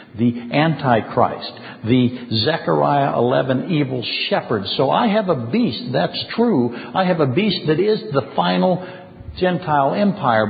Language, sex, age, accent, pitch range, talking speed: English, male, 60-79, American, 130-175 Hz, 135 wpm